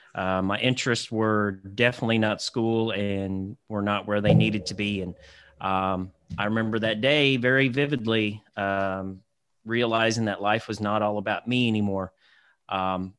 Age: 30-49